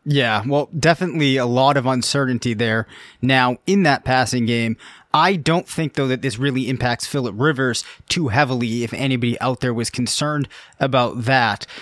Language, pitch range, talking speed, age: English, 130-150 Hz, 170 wpm, 30-49